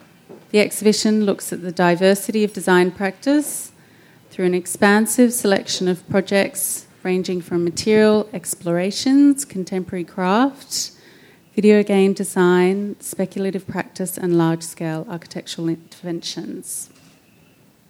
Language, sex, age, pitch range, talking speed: English, female, 30-49, 170-205 Hz, 105 wpm